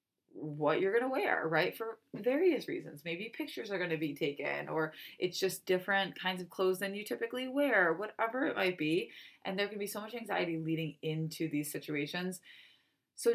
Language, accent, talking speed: English, American, 195 wpm